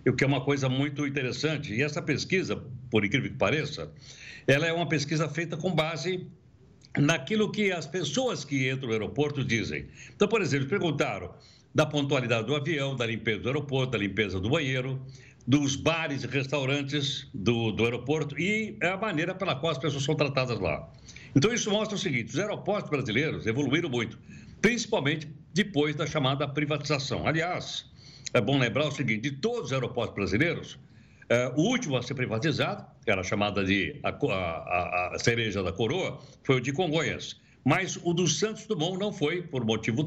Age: 60-79